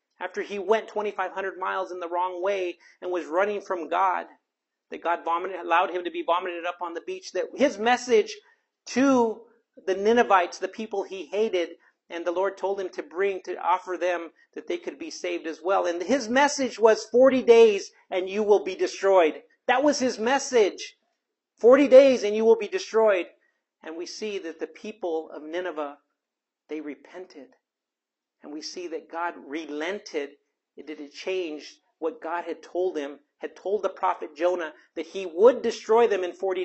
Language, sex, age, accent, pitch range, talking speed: English, male, 40-59, American, 170-235 Hz, 185 wpm